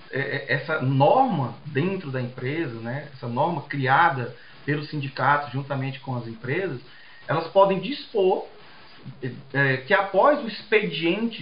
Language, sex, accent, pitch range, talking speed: Portuguese, male, Brazilian, 135-165 Hz, 115 wpm